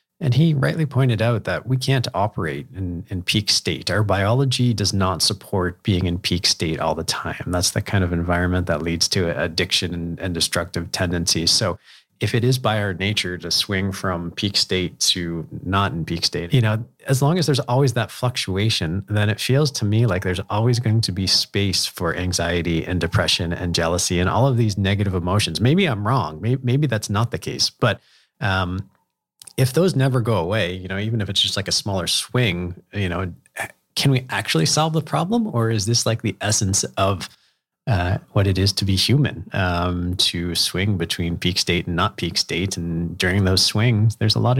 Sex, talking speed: male, 205 wpm